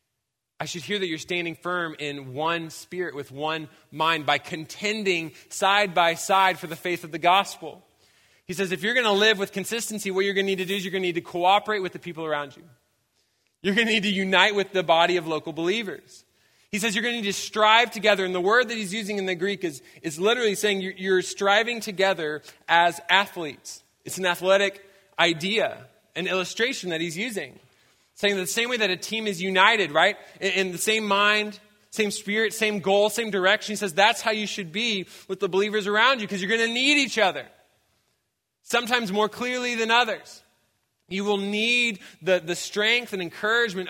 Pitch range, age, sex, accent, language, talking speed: 165-210 Hz, 20-39, male, American, English, 210 wpm